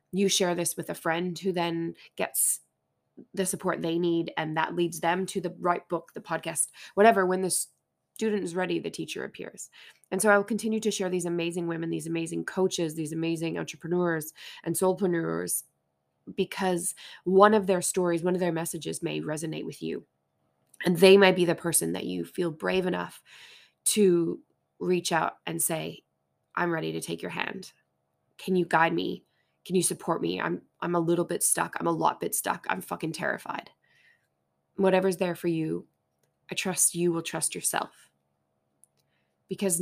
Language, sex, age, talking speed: English, female, 20-39, 180 wpm